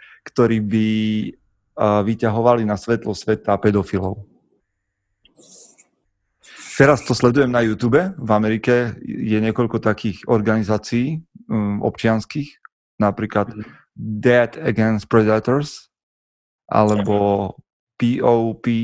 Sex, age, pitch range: male, 30-49, 100-120 Hz